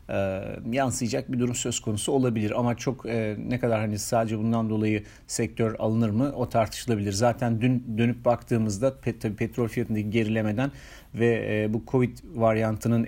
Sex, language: male, Turkish